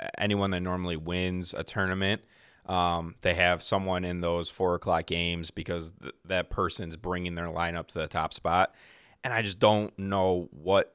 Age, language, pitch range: 30-49, English, 85-100 Hz